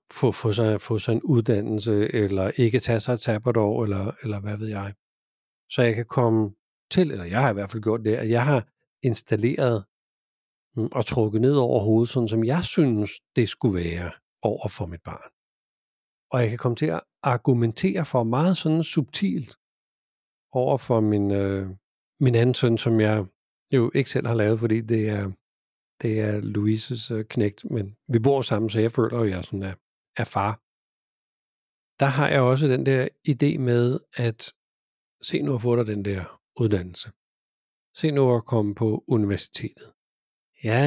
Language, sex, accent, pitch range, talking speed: Danish, male, native, 105-130 Hz, 180 wpm